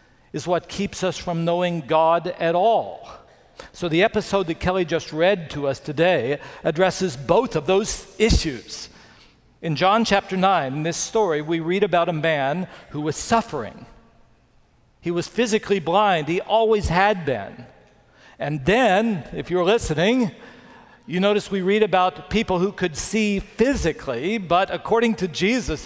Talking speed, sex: 155 wpm, male